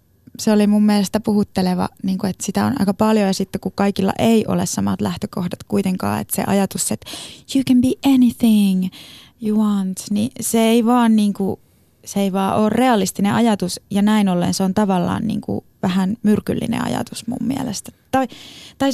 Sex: female